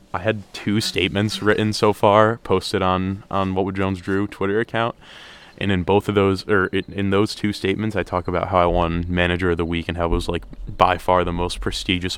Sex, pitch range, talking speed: male, 85-100 Hz, 225 wpm